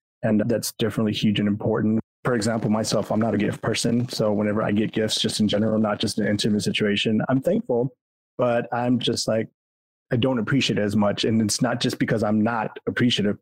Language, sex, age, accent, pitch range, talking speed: English, male, 30-49, American, 105-115 Hz, 210 wpm